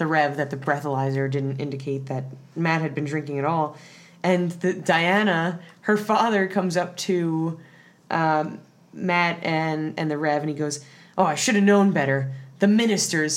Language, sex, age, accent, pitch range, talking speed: English, female, 20-39, American, 145-180 Hz, 175 wpm